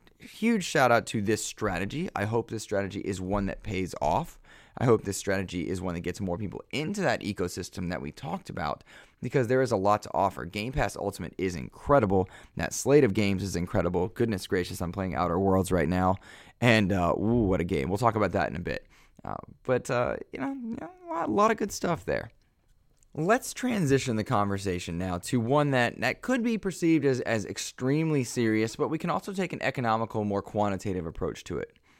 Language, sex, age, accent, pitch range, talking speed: English, male, 20-39, American, 90-120 Hz, 210 wpm